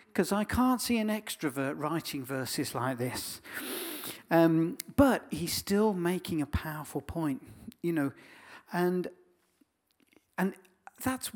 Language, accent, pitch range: Danish, British, 150-210 Hz